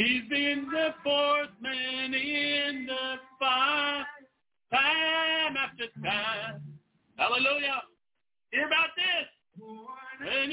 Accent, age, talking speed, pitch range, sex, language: American, 50-69, 90 wpm, 260-320 Hz, male, English